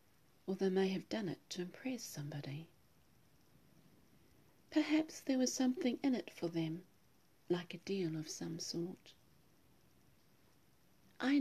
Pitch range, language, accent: 160-225 Hz, English, British